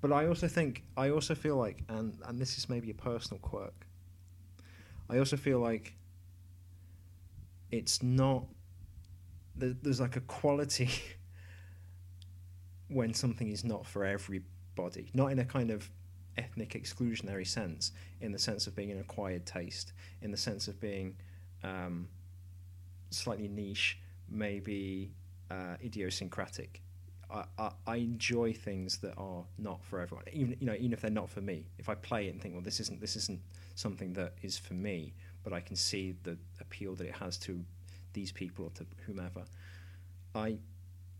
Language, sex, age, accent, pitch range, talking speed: English, male, 30-49, British, 90-110 Hz, 160 wpm